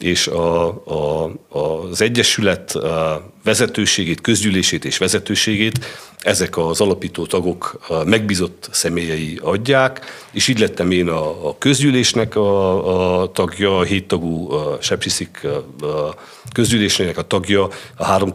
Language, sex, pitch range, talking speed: Hungarian, male, 85-105 Hz, 135 wpm